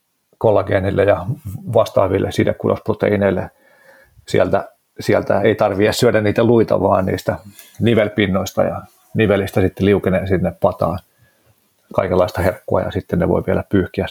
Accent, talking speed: native, 120 wpm